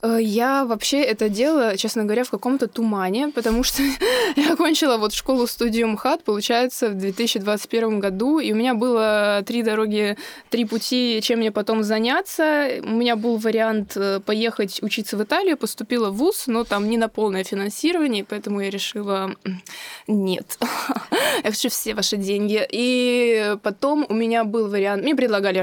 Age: 20-39